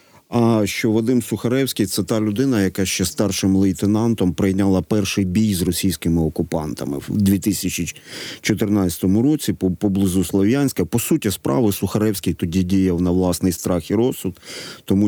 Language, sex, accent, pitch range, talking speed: Ukrainian, male, native, 95-115 Hz, 140 wpm